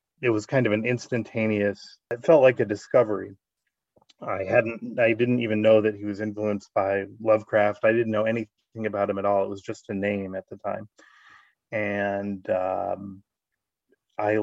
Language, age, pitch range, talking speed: Swedish, 30-49, 105-120 Hz, 175 wpm